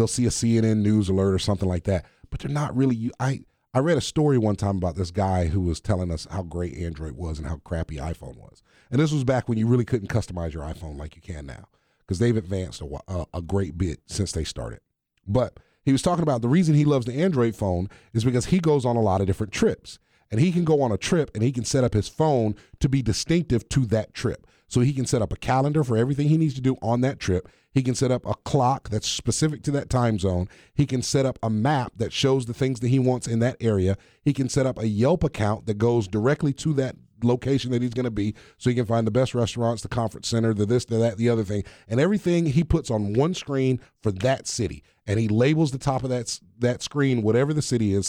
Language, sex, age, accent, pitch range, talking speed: English, male, 30-49, American, 100-135 Hz, 255 wpm